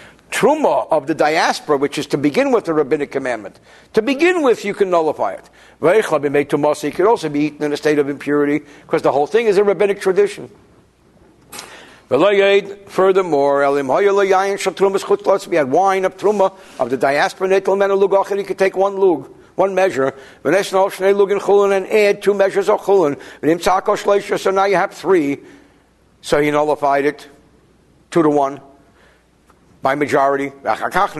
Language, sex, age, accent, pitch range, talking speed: English, male, 60-79, American, 145-200 Hz, 135 wpm